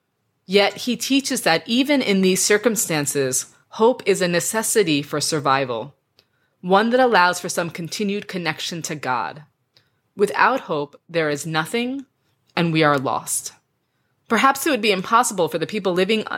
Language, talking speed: English, 150 wpm